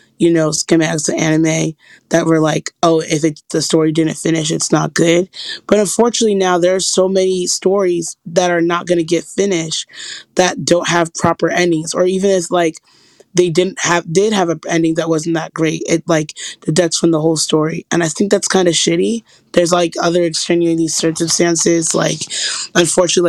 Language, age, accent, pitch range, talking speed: English, 20-39, American, 160-180 Hz, 190 wpm